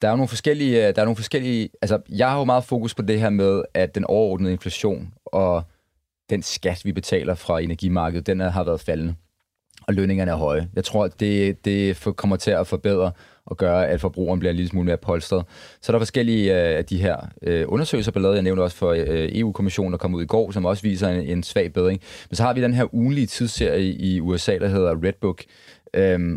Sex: male